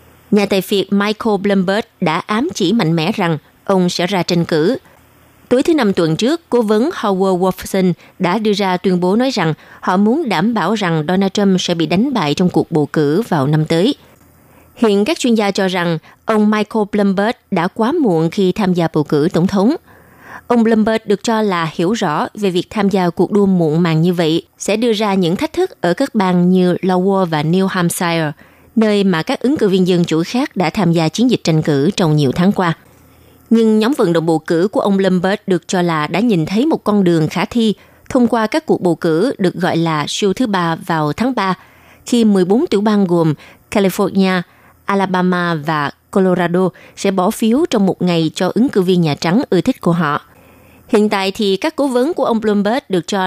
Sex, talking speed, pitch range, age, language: female, 215 wpm, 170-215 Hz, 20-39, Vietnamese